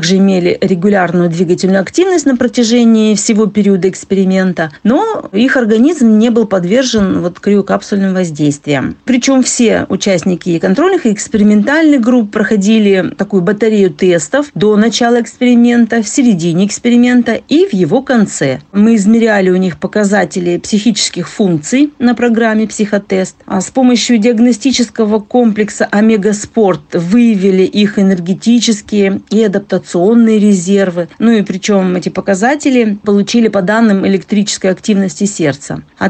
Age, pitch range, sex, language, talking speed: 40-59, 195-240 Hz, female, Russian, 120 wpm